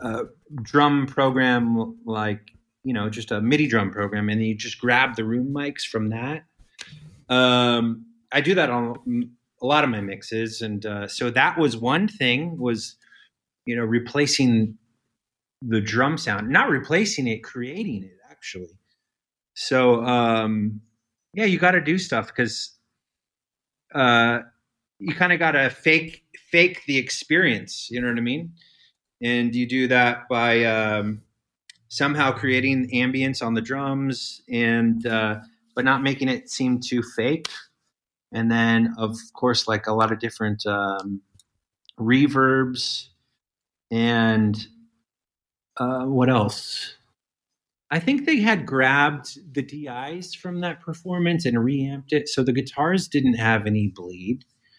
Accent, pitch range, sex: American, 110-135 Hz, male